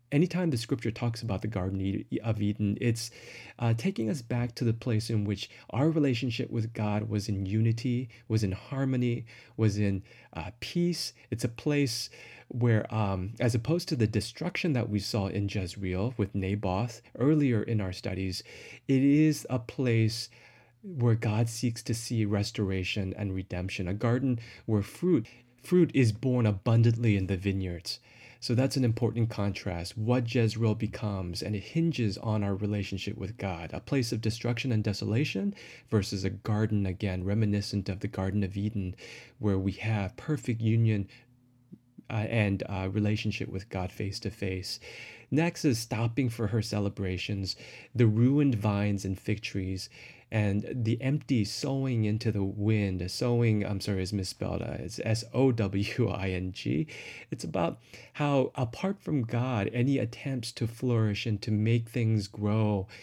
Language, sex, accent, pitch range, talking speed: English, male, American, 100-120 Hz, 155 wpm